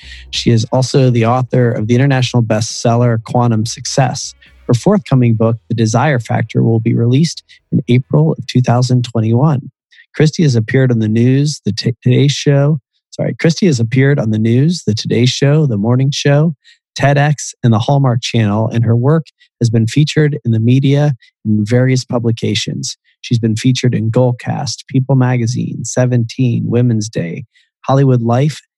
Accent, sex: American, male